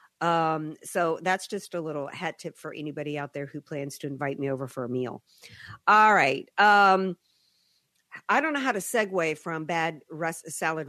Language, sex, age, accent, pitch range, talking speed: English, female, 50-69, American, 160-205 Hz, 180 wpm